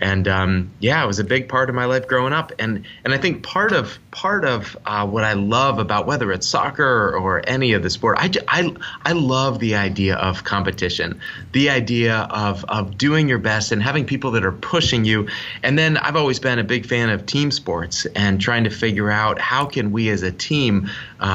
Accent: American